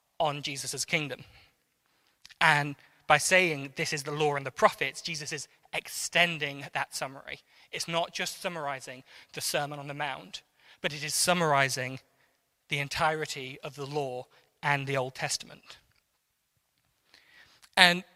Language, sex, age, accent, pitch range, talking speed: English, male, 20-39, British, 145-180 Hz, 135 wpm